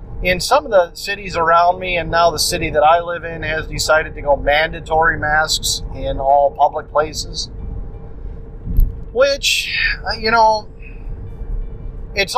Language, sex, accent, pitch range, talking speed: English, male, American, 140-185 Hz, 140 wpm